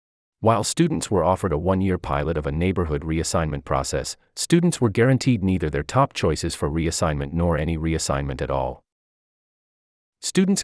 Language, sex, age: English, male, 30-49